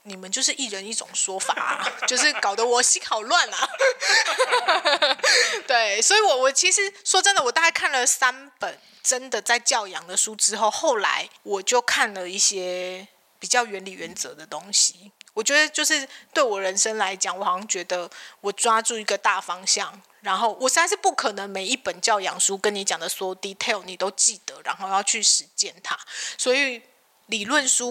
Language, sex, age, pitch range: Chinese, female, 20-39, 195-255 Hz